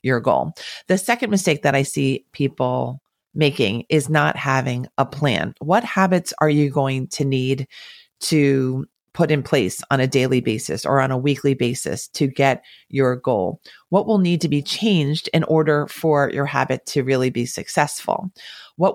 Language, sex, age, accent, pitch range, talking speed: English, female, 40-59, American, 140-175 Hz, 175 wpm